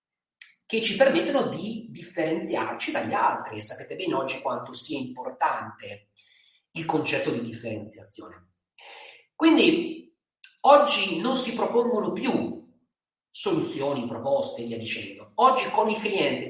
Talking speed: 115 wpm